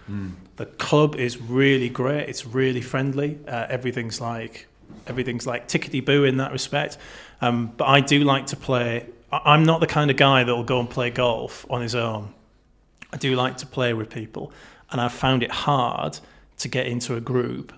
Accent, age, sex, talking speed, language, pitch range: British, 30-49, male, 190 wpm, English, 115-135 Hz